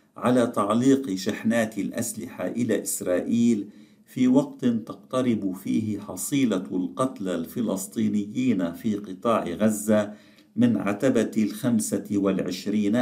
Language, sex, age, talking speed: Arabic, male, 50-69, 90 wpm